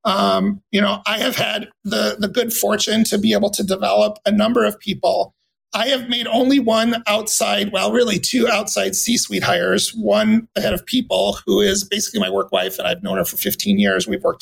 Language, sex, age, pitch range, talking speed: English, male, 30-49, 200-235 Hz, 210 wpm